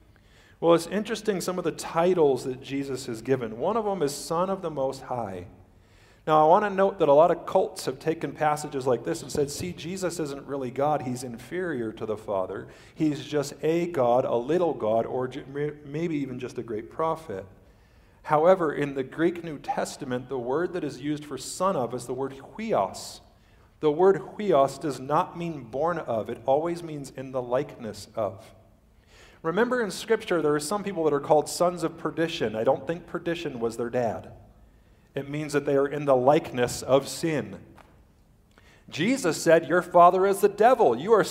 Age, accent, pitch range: 50-69, American, 120-170 Hz